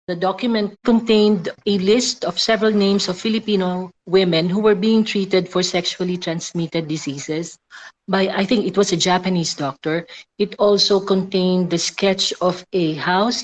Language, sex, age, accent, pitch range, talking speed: English, female, 40-59, Filipino, 160-200 Hz, 155 wpm